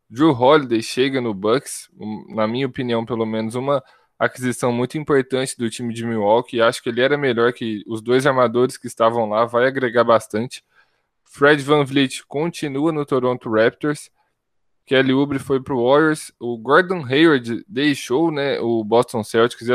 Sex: male